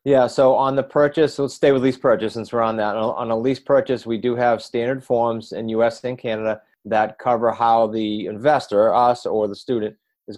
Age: 30-49